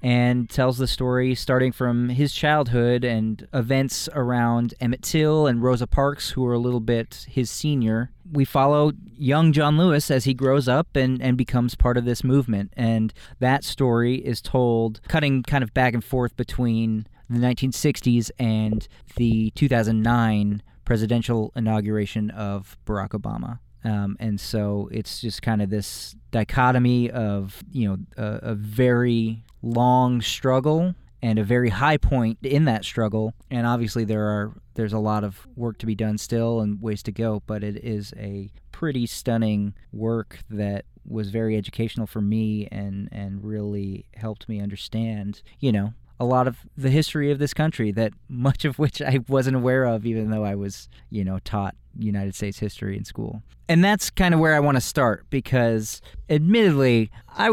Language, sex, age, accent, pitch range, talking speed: English, male, 30-49, American, 110-130 Hz, 170 wpm